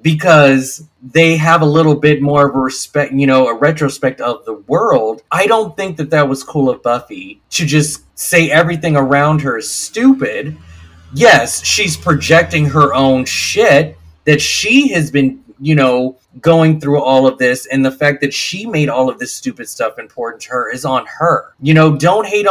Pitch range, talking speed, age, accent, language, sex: 130-165 Hz, 190 wpm, 30-49, American, English, male